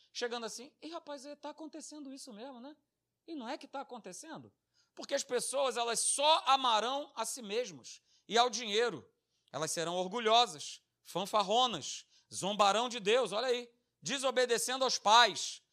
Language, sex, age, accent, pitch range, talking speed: Portuguese, male, 40-59, Brazilian, 225-295 Hz, 150 wpm